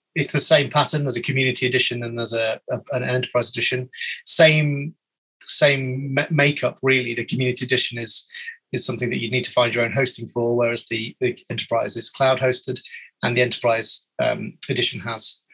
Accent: British